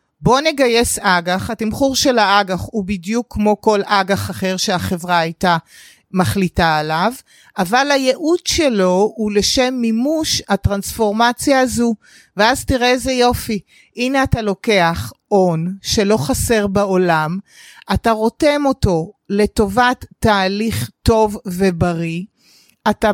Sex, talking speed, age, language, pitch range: female, 110 wpm, 30-49, Hebrew, 185-225 Hz